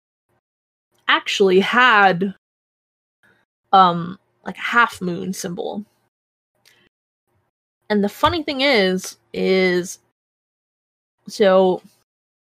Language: English